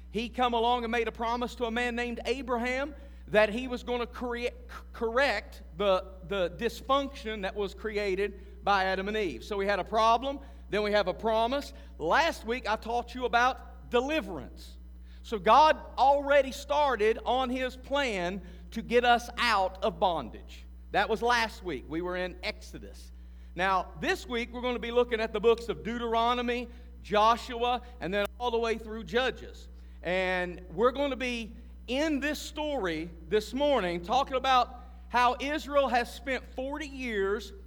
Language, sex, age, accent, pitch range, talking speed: English, male, 50-69, American, 190-255 Hz, 165 wpm